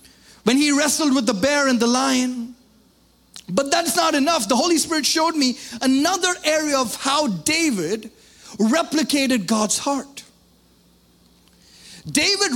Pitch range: 240-310 Hz